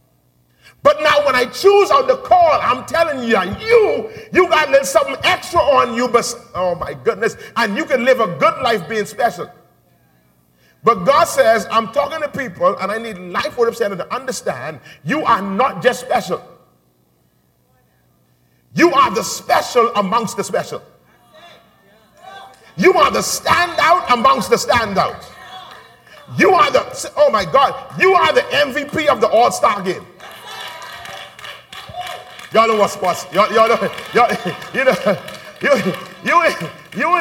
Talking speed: 145 wpm